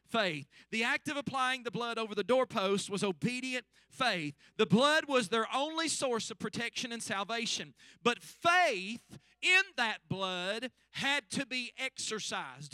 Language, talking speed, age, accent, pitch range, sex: English, 150 wpm, 40-59, American, 215-280 Hz, male